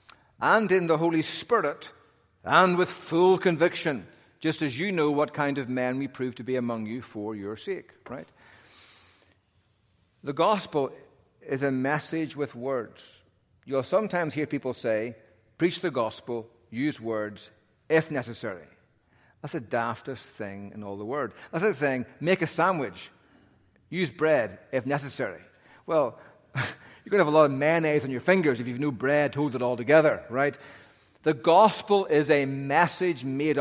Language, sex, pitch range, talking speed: English, male, 120-160 Hz, 165 wpm